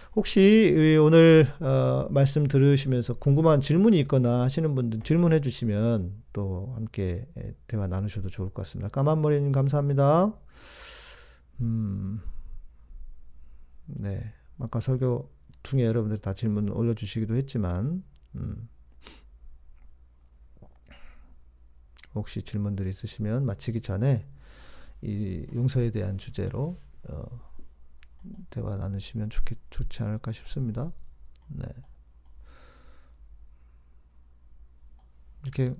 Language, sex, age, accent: Korean, male, 40-59, native